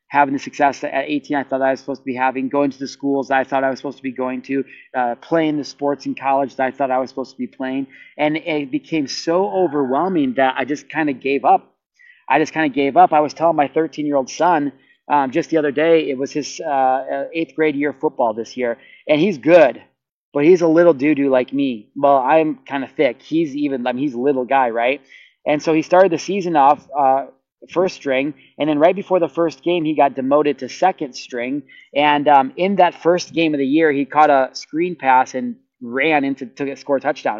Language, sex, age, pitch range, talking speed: English, male, 30-49, 135-160 Hz, 240 wpm